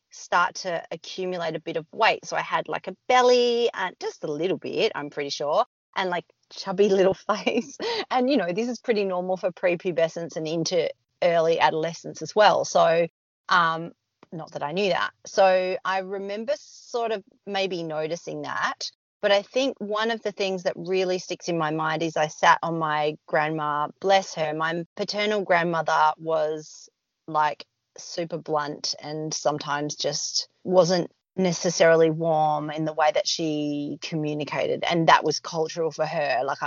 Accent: Australian